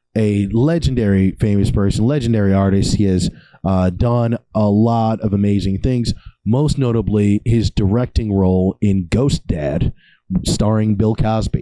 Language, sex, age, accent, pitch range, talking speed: English, male, 30-49, American, 100-120 Hz, 135 wpm